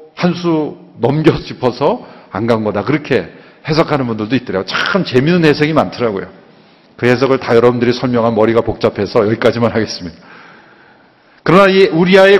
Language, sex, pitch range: Korean, male, 115-165 Hz